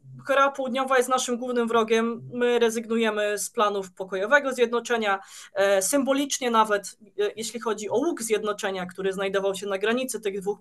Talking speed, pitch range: 145 wpm, 210-255 Hz